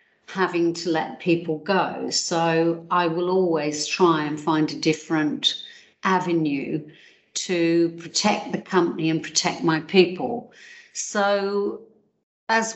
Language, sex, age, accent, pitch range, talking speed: English, female, 50-69, British, 160-185 Hz, 120 wpm